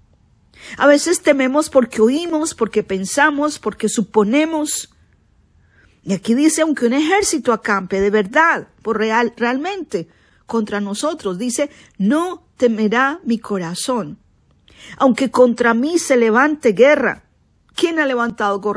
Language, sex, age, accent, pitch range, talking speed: Spanish, female, 40-59, American, 200-285 Hz, 110 wpm